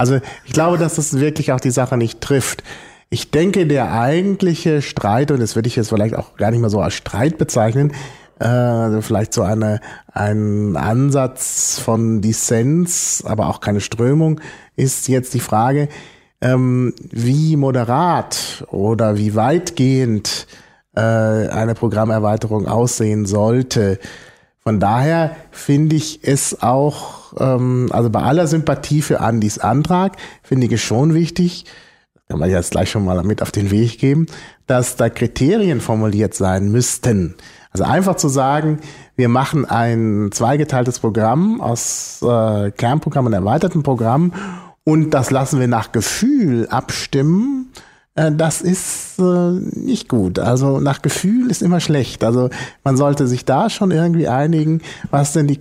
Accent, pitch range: German, 115-155 Hz